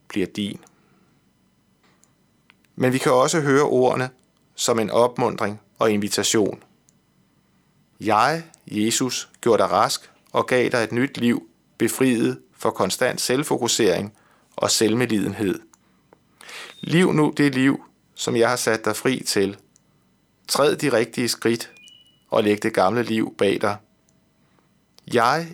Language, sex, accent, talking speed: Danish, male, native, 120 wpm